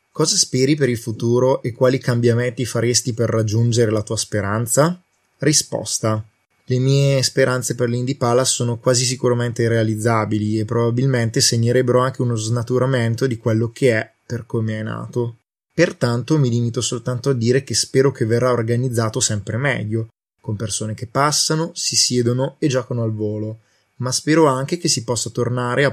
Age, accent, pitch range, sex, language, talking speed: 20-39, native, 115-130 Hz, male, Italian, 160 wpm